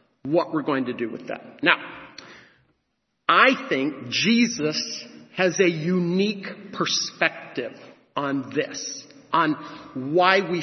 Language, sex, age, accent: English, male, 50-69, American